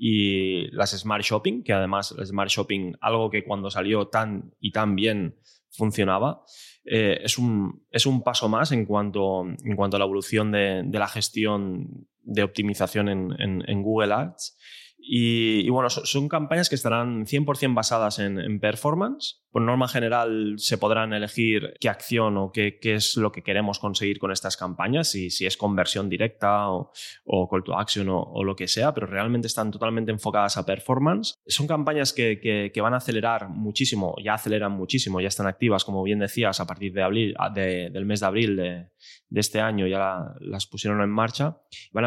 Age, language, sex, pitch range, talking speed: 20-39, Spanish, male, 100-115 Hz, 195 wpm